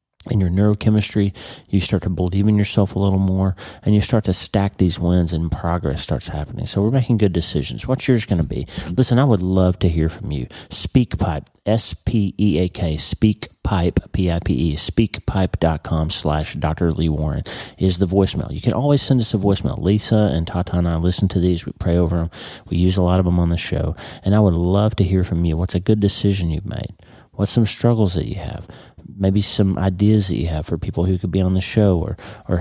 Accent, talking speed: American, 215 wpm